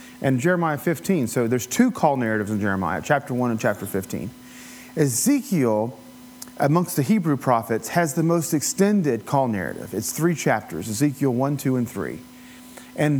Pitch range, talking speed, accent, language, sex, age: 120-155 Hz, 160 wpm, American, English, male, 40-59